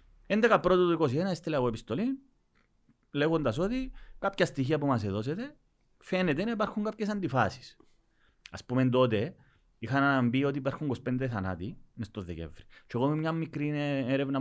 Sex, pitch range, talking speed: male, 110-155 Hz, 145 wpm